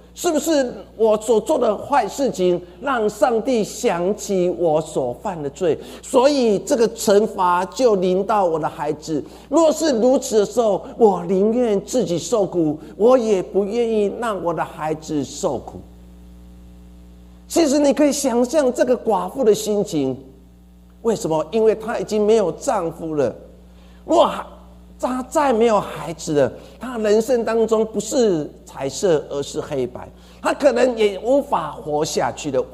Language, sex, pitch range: Chinese, male, 170-245 Hz